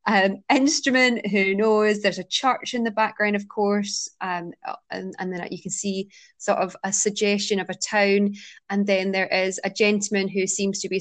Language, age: English, 20-39